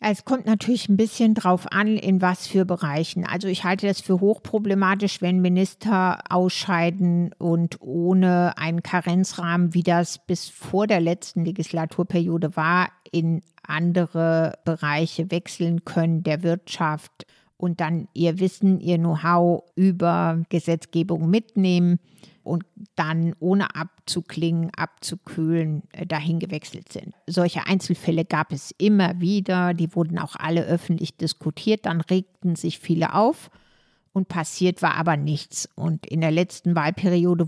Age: 60-79